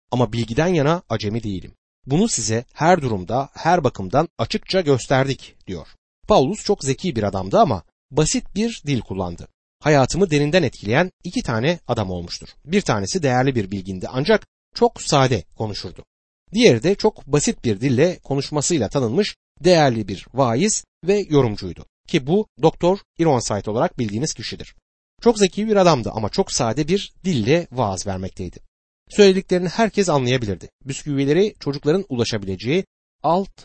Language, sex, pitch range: Turkish, male, 110-175 Hz